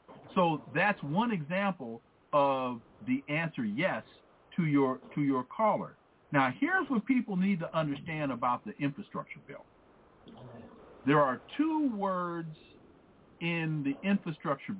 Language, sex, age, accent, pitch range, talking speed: English, male, 50-69, American, 140-215 Hz, 125 wpm